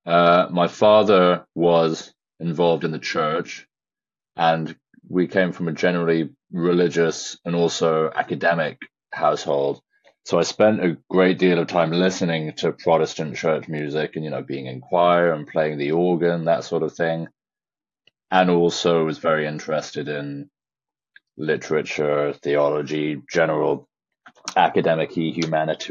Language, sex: English, male